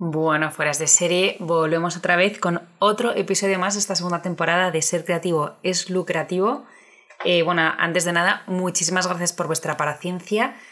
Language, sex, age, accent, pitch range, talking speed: Spanish, female, 20-39, Spanish, 160-190 Hz, 170 wpm